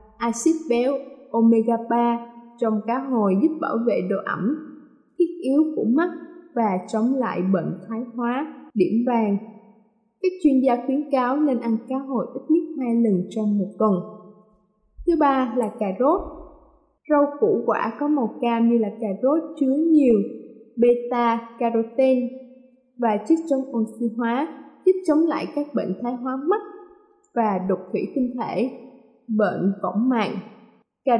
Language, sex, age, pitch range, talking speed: Vietnamese, female, 20-39, 225-300 Hz, 155 wpm